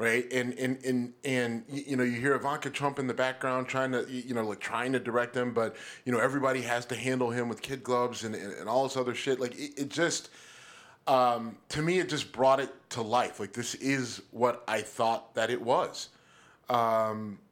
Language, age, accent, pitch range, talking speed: English, 30-49, American, 120-150 Hz, 220 wpm